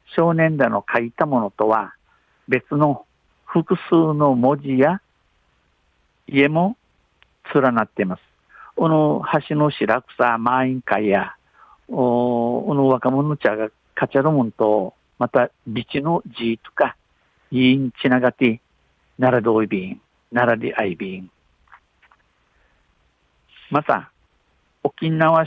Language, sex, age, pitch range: Japanese, male, 50-69, 110-135 Hz